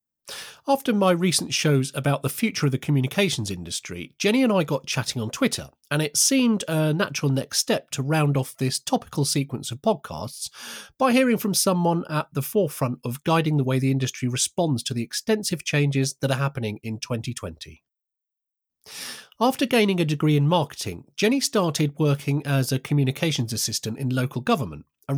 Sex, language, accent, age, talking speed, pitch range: male, English, British, 30-49, 175 wpm, 130-180 Hz